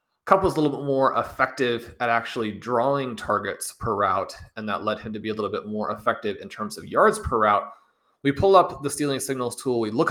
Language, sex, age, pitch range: English, male, 30-49, 110-135 Hz